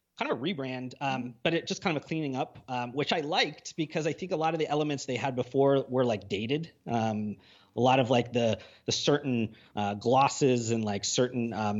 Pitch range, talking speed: 110-140 Hz, 230 wpm